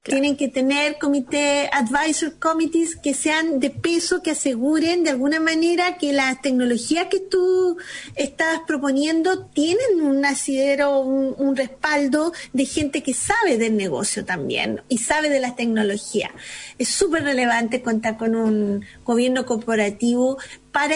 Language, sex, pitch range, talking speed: Spanish, female, 245-300 Hz, 140 wpm